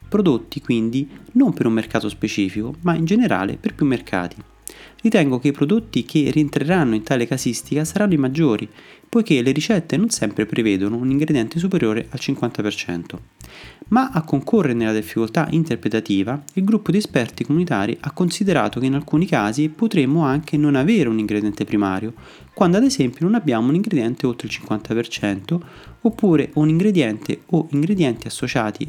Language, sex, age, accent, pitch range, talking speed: Italian, male, 30-49, native, 115-165 Hz, 160 wpm